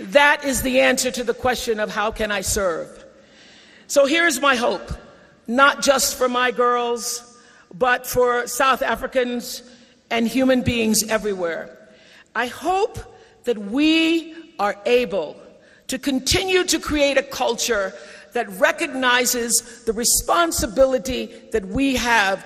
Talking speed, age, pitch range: 130 wpm, 50-69, 230-280 Hz